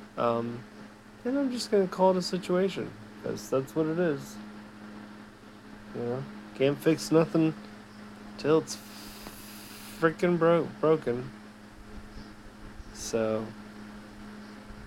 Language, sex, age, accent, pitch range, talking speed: English, male, 30-49, American, 105-120 Hz, 105 wpm